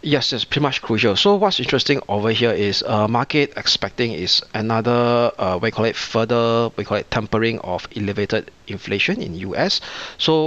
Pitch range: 105-125 Hz